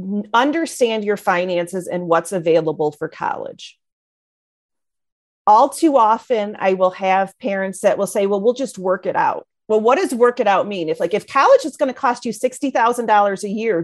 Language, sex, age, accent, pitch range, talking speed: English, female, 40-59, American, 185-255 Hz, 185 wpm